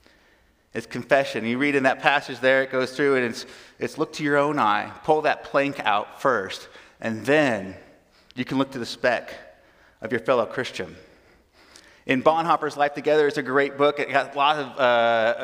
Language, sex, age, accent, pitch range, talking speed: English, male, 30-49, American, 120-155 Hz, 195 wpm